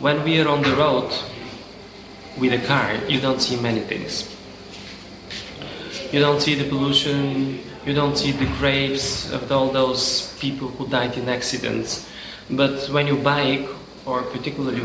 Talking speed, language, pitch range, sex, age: 155 wpm, Romanian, 125-145 Hz, male, 20-39